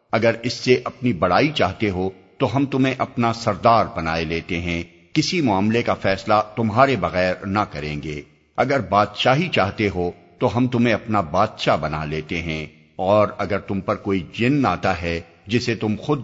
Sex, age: male, 50-69